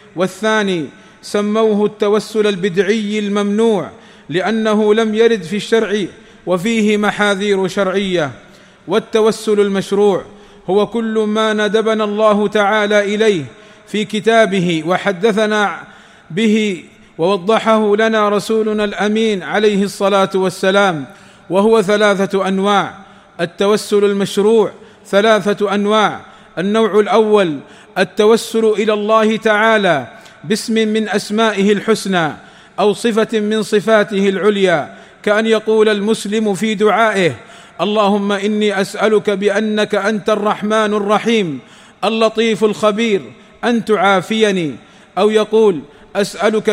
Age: 40-59